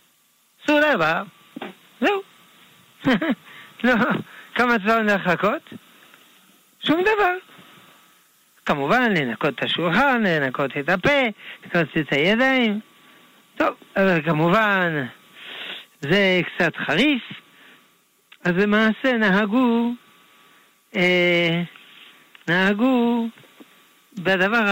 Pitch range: 175-240 Hz